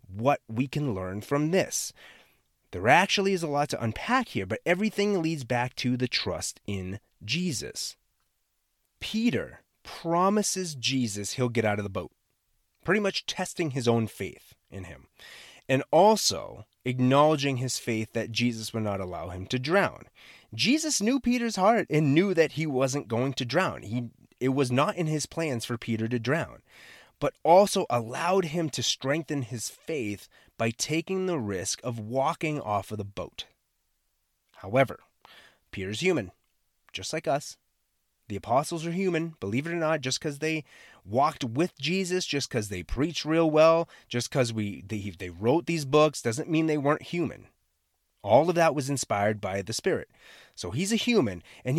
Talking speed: 165 wpm